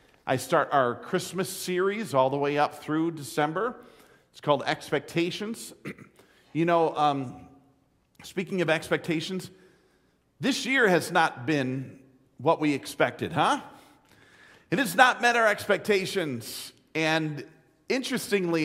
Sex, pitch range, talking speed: male, 130-185 Hz, 120 wpm